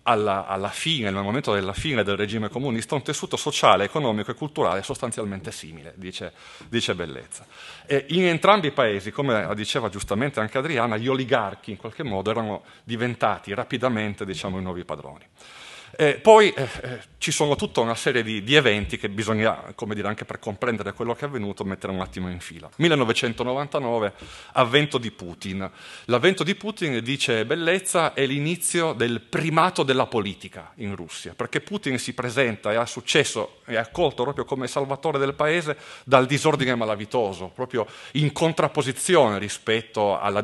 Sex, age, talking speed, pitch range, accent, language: male, 30-49, 165 wpm, 100-140 Hz, native, Italian